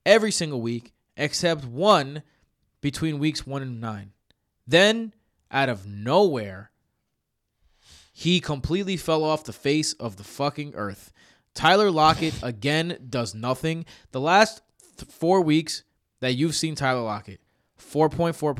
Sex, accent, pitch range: male, American, 120-160 Hz